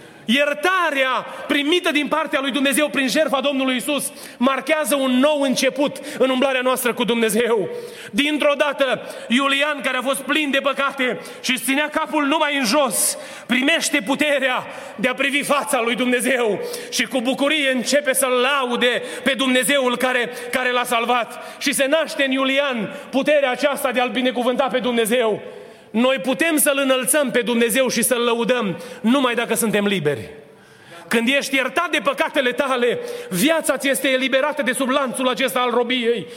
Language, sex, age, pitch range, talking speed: Romanian, male, 30-49, 245-285 Hz, 155 wpm